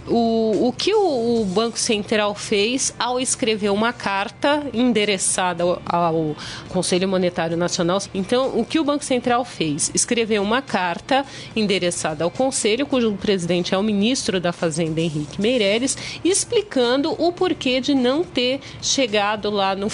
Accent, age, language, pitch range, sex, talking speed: Brazilian, 40-59, Portuguese, 195-255 Hz, female, 140 wpm